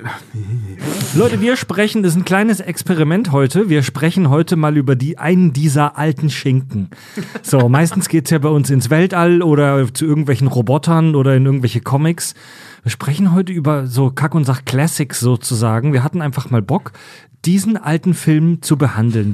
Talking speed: 170 wpm